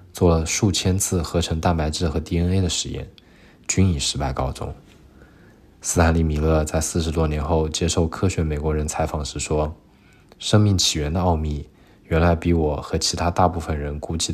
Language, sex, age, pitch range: Chinese, male, 20-39, 80-95 Hz